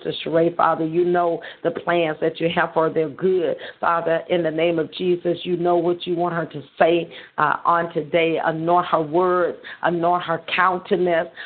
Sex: female